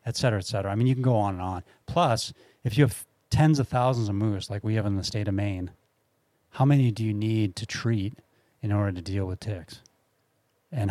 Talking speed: 235 wpm